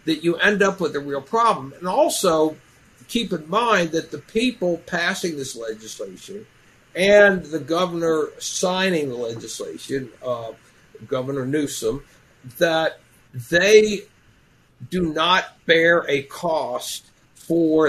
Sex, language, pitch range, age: male, English, 135-170 Hz, 60-79